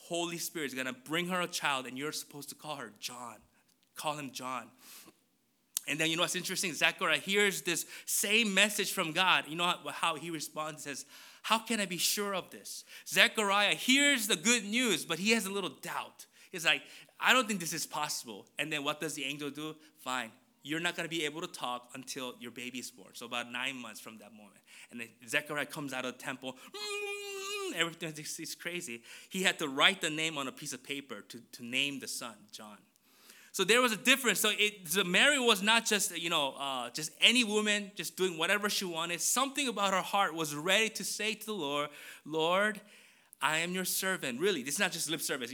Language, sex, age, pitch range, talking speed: English, male, 20-39, 145-205 Hz, 215 wpm